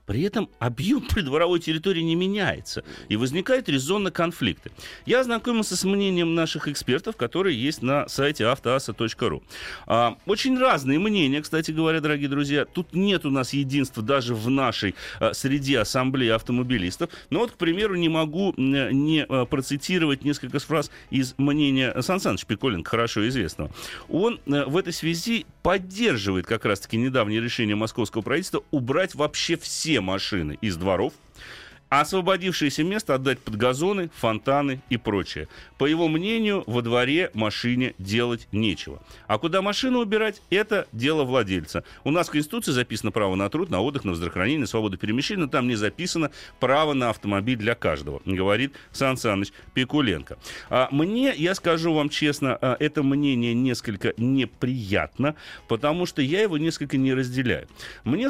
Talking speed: 145 wpm